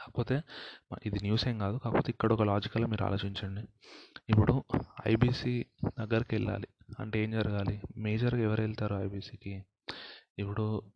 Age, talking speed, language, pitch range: 30-49, 120 wpm, Telugu, 100-115 Hz